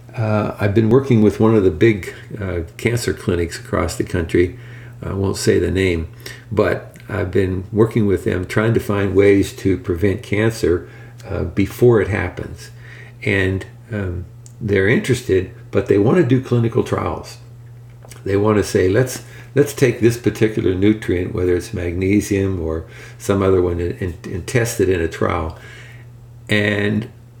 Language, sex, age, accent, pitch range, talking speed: English, male, 50-69, American, 95-120 Hz, 160 wpm